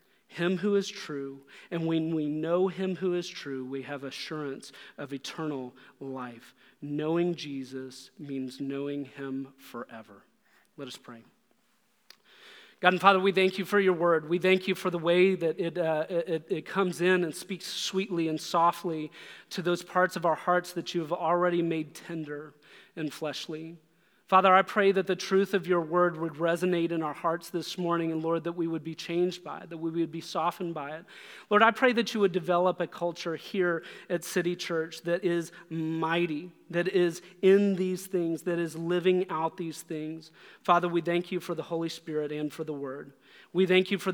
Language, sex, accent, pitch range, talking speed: English, male, American, 160-180 Hz, 195 wpm